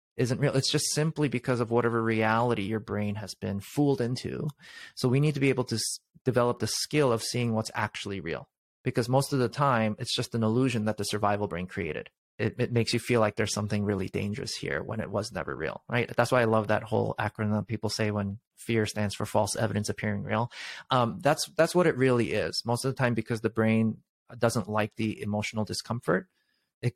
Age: 30-49